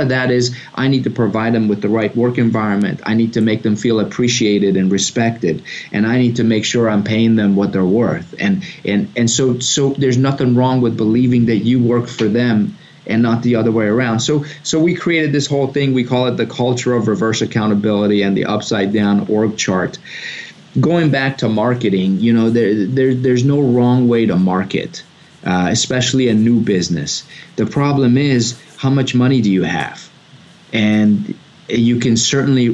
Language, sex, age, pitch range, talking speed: English, male, 30-49, 105-125 Hz, 195 wpm